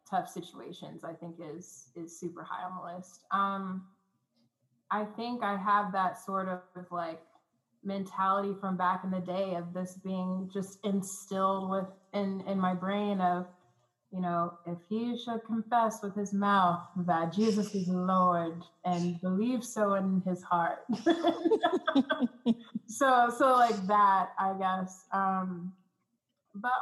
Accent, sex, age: American, female, 20-39